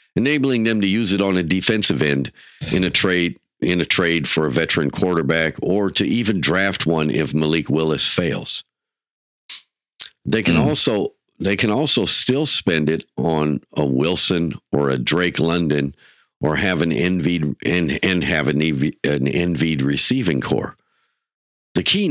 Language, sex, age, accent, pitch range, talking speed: English, male, 50-69, American, 75-100 Hz, 155 wpm